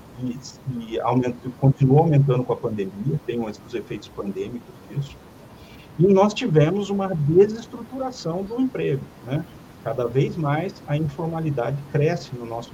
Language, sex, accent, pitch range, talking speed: English, male, Brazilian, 135-185 Hz, 140 wpm